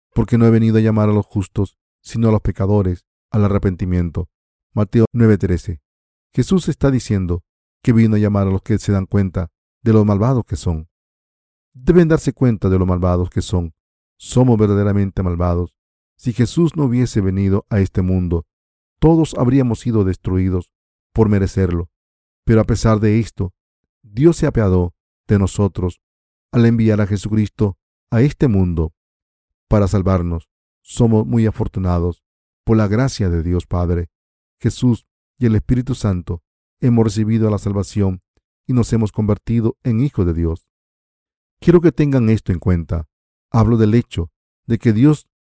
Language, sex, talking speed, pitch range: Spanish, male, 155 wpm, 90-115 Hz